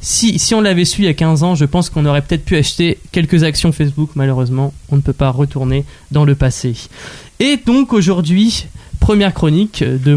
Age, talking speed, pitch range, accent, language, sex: 20-39, 205 wpm, 140-180 Hz, French, French, male